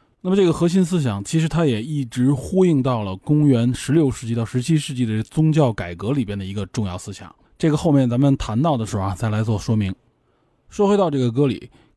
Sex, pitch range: male, 115-155 Hz